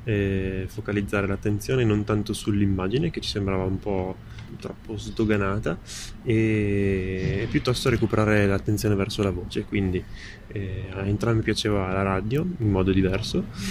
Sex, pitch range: male, 95-110 Hz